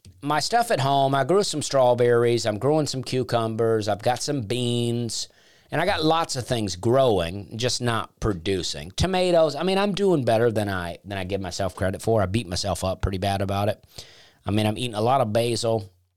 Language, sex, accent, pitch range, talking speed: English, male, American, 100-135 Hz, 210 wpm